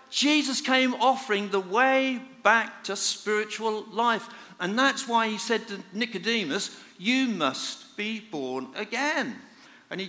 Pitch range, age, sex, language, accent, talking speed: 165-245 Hz, 50-69, male, English, British, 135 wpm